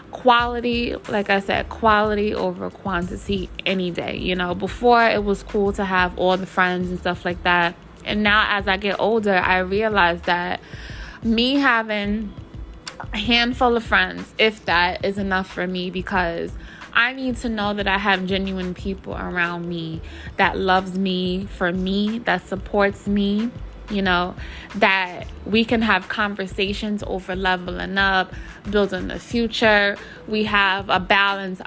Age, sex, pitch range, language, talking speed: 20-39, female, 185-215 Hz, English, 155 wpm